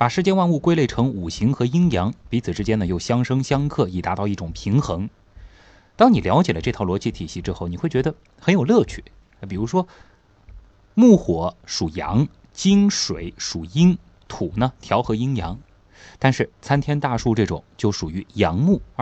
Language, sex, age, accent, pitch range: Chinese, male, 20-39, native, 95-145 Hz